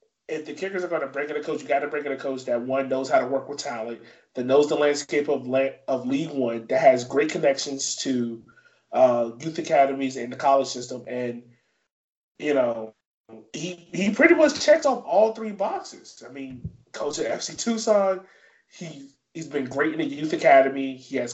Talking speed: 210 wpm